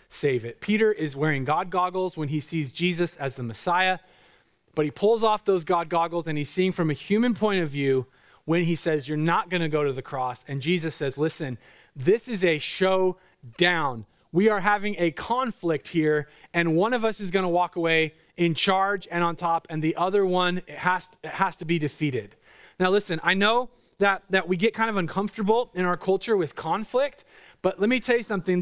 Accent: American